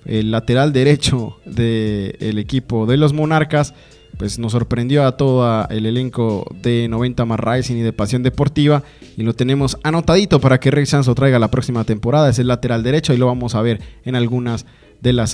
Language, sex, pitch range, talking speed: English, male, 125-155 Hz, 190 wpm